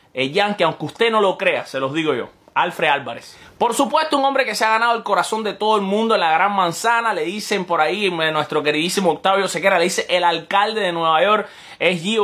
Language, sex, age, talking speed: Spanish, male, 20-39, 235 wpm